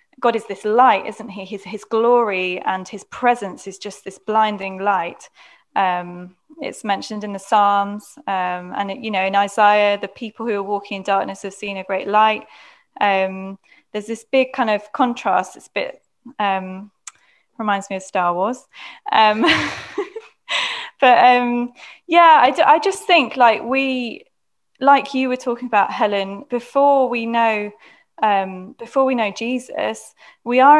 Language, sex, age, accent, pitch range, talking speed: English, female, 10-29, British, 200-250 Hz, 160 wpm